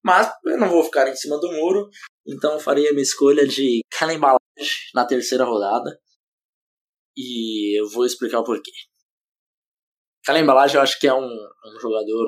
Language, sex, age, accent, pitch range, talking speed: Portuguese, male, 20-39, Brazilian, 115-145 Hz, 165 wpm